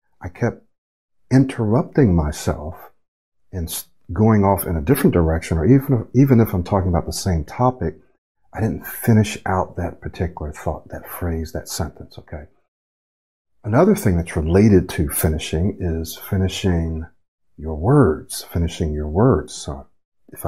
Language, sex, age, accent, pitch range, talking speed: English, male, 50-69, American, 80-105 Hz, 140 wpm